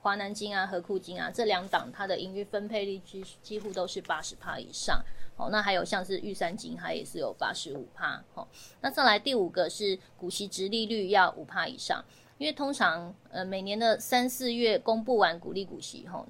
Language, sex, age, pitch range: Chinese, female, 20-39, 185-235 Hz